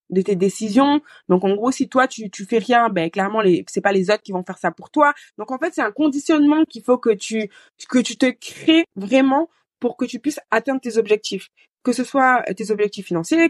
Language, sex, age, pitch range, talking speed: French, female, 20-39, 185-235 Hz, 235 wpm